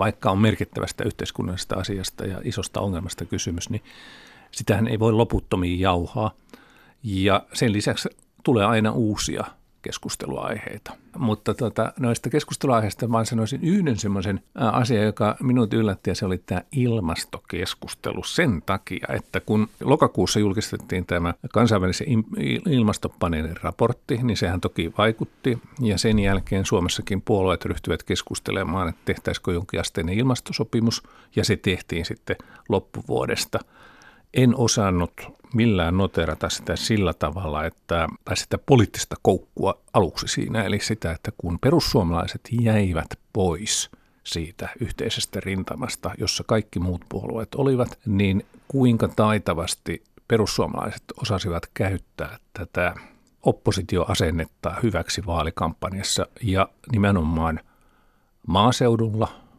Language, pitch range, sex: Finnish, 90-115 Hz, male